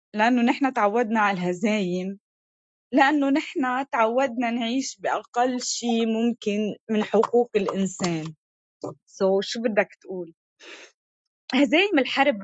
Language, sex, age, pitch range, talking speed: Arabic, female, 20-39, 180-230 Hz, 95 wpm